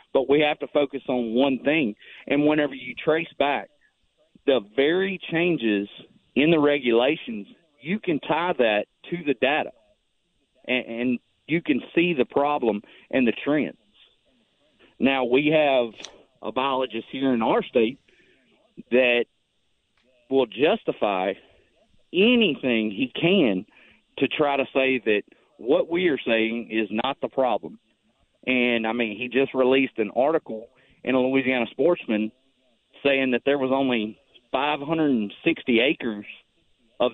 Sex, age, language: male, 40-59, English